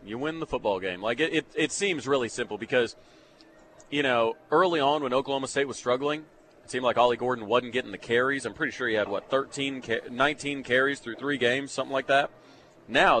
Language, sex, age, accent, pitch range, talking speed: English, male, 30-49, American, 120-150 Hz, 215 wpm